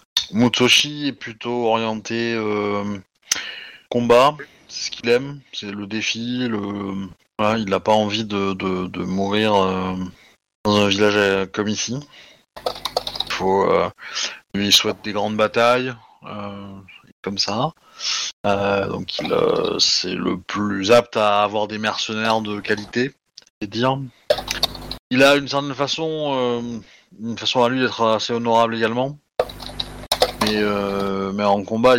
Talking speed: 135 wpm